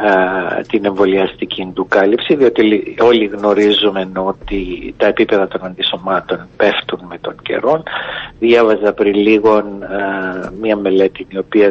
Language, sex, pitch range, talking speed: Greek, male, 100-130 Hz, 125 wpm